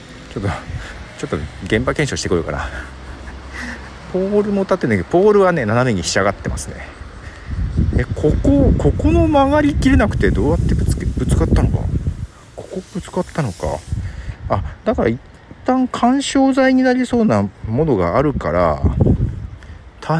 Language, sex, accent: Japanese, male, native